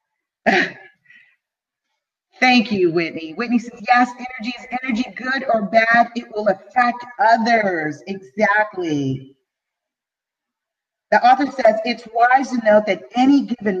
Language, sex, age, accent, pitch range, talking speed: English, female, 30-49, American, 185-250 Hz, 115 wpm